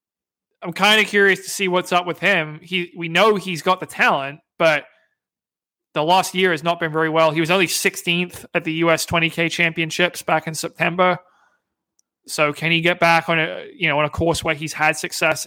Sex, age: male, 20-39